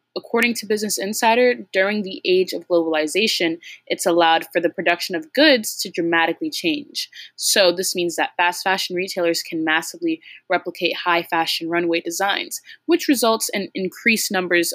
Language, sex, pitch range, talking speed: English, female, 170-215 Hz, 155 wpm